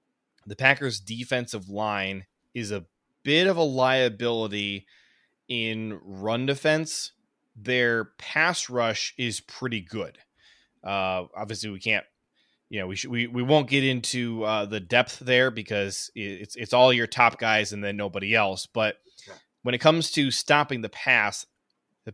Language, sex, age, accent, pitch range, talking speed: English, male, 20-39, American, 105-125 Hz, 150 wpm